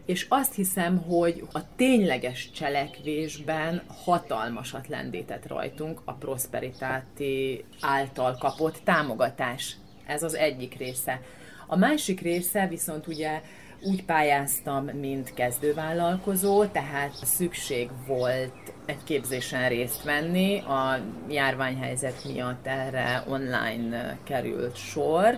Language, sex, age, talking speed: Hungarian, female, 30-49, 100 wpm